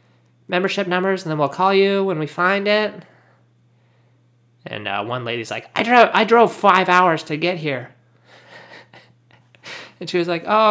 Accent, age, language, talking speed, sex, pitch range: American, 20-39, English, 170 wpm, male, 120-165 Hz